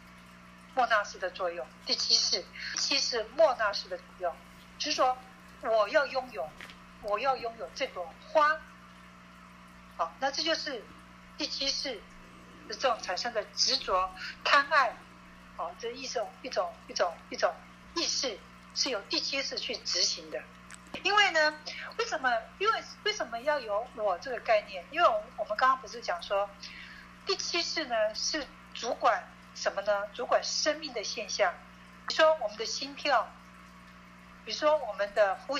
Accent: native